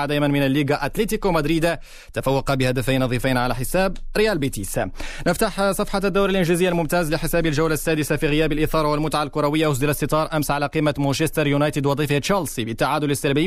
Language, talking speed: Arabic, 160 wpm